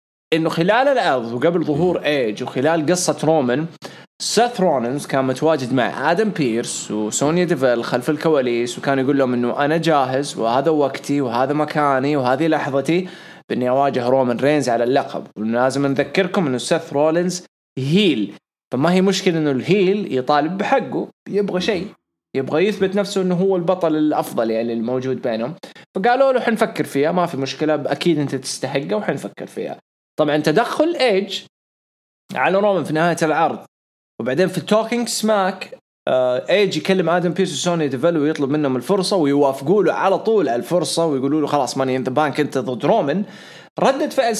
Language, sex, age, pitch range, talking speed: English, male, 20-39, 135-185 Hz, 155 wpm